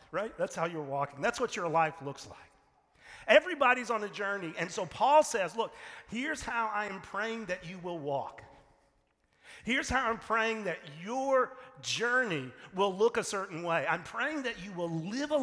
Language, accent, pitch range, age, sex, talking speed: English, American, 145-215 Hz, 40-59, male, 185 wpm